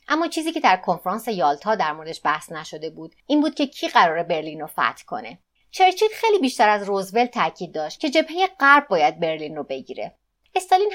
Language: Persian